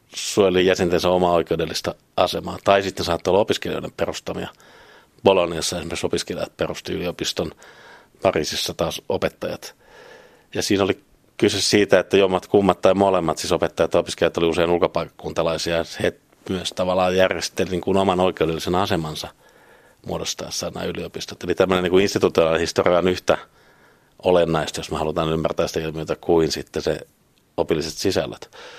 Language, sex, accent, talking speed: Finnish, male, native, 135 wpm